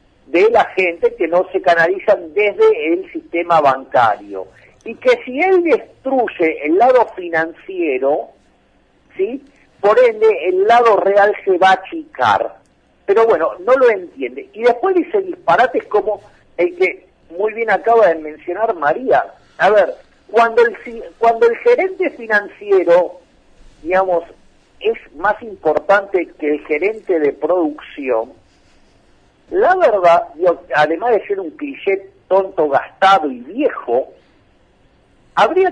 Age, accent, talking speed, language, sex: 50-69, Argentinian, 130 wpm, Spanish, male